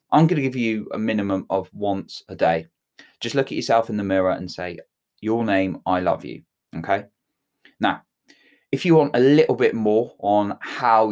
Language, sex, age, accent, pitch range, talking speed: English, male, 20-39, British, 95-115 Hz, 190 wpm